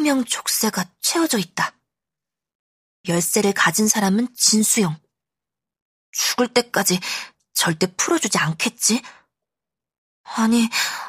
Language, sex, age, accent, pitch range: Korean, female, 20-39, native, 180-240 Hz